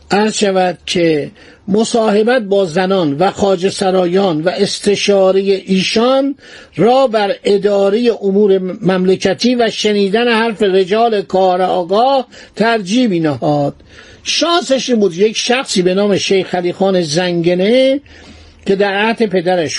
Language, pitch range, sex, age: Persian, 180-220 Hz, male, 50-69